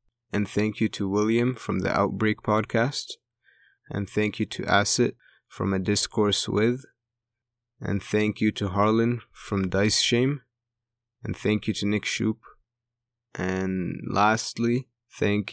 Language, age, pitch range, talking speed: English, 20-39, 95-110 Hz, 135 wpm